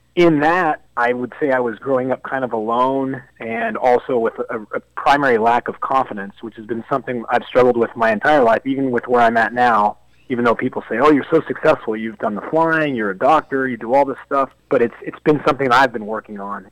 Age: 30-49